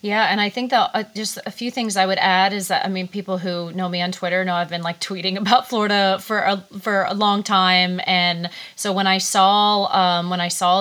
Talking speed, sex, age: 250 wpm, female, 30-49